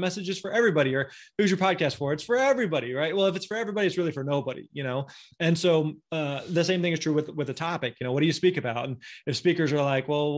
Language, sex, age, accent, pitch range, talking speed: English, male, 20-39, American, 140-180 Hz, 280 wpm